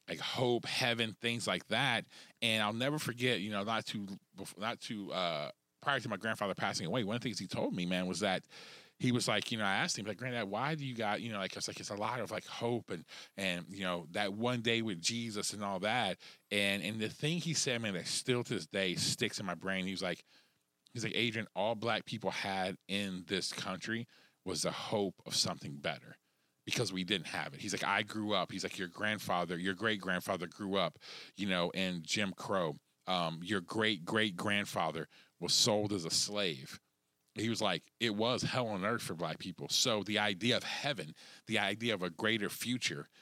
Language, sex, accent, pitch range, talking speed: English, male, American, 95-115 Hz, 225 wpm